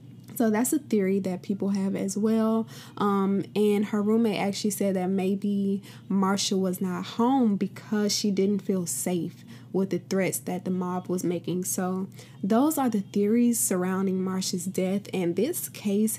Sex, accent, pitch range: female, American, 180-205 Hz